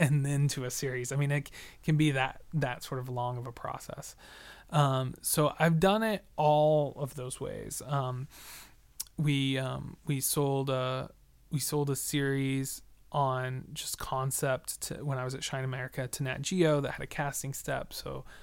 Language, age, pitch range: English, 20-39, 125-145 Hz